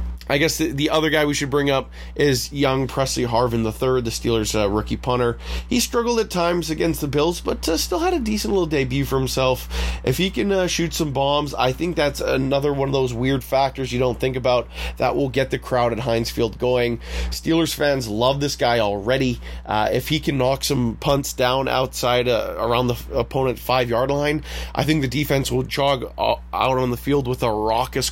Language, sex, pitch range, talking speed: English, male, 115-145 Hz, 215 wpm